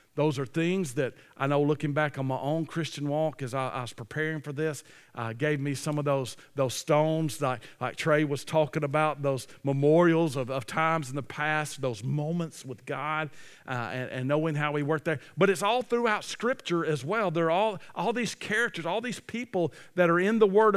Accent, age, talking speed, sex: American, 50-69, 215 wpm, male